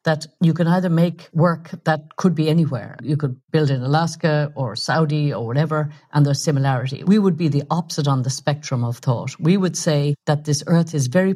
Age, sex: 50-69, female